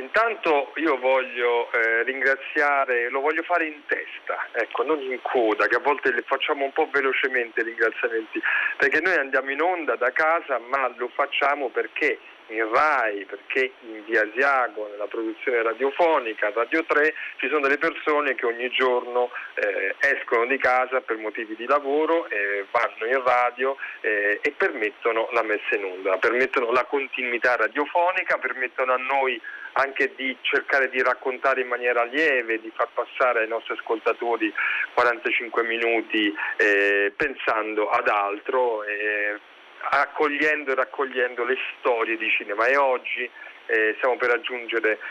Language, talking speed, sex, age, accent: Italian, 150 wpm, male, 40-59, native